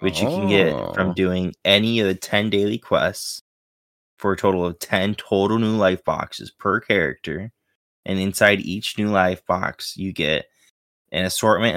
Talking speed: 170 wpm